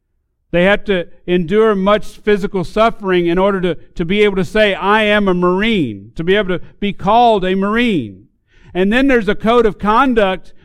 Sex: male